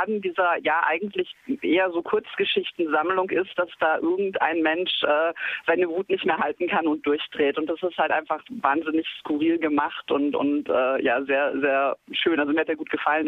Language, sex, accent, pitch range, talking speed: German, female, German, 160-230 Hz, 185 wpm